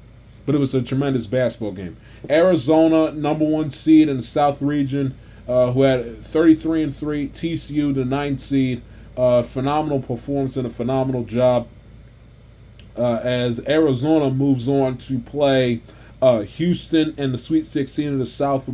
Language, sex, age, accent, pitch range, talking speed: English, male, 20-39, American, 115-145 Hz, 145 wpm